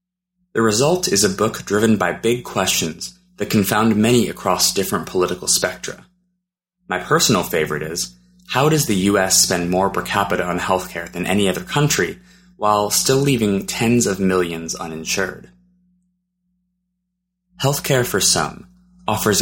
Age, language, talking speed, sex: 20-39, English, 140 wpm, male